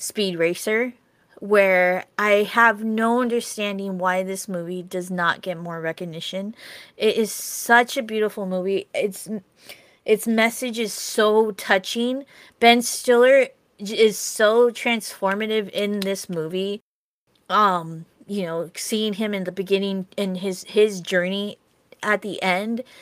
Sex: female